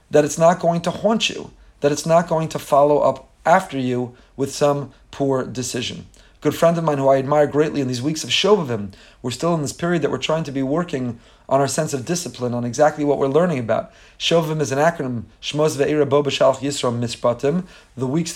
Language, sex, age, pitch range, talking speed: English, male, 30-49, 130-160 Hz, 220 wpm